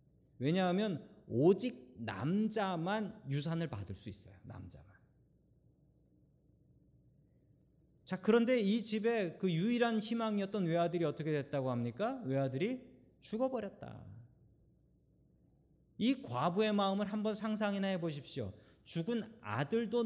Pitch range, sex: 130-200 Hz, male